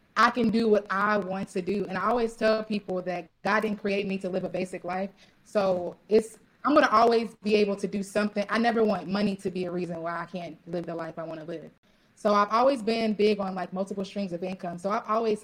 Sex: female